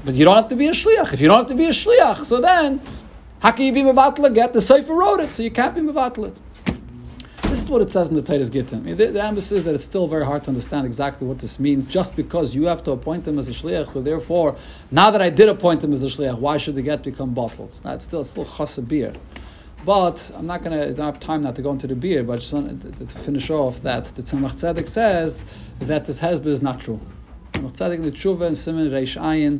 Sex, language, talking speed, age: male, English, 255 wpm, 50-69